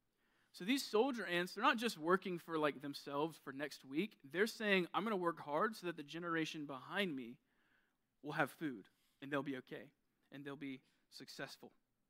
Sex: male